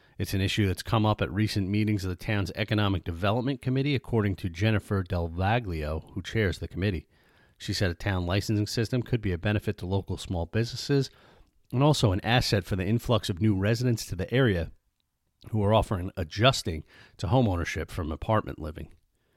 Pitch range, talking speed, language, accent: 90-115 Hz, 185 wpm, English, American